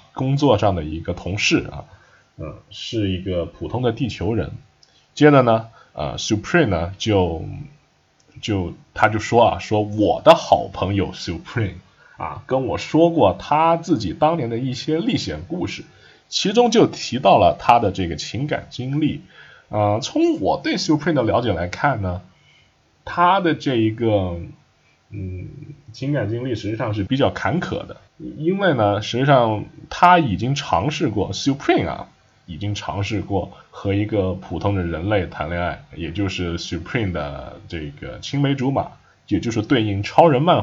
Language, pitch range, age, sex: Chinese, 95-140 Hz, 20-39, male